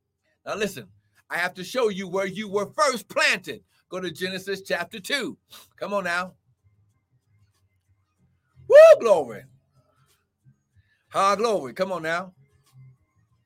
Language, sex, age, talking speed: English, male, 60-79, 120 wpm